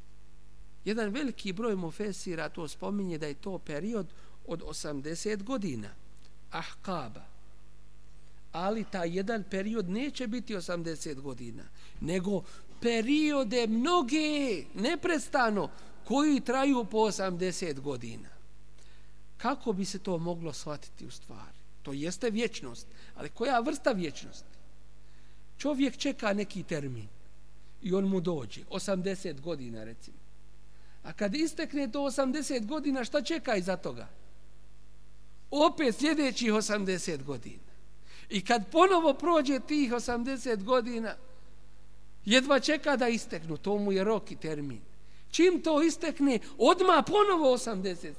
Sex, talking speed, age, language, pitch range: male, 115 wpm, 50-69, English, 175-285 Hz